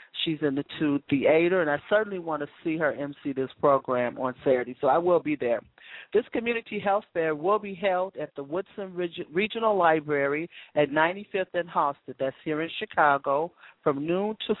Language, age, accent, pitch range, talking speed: English, 40-59, American, 145-195 Hz, 190 wpm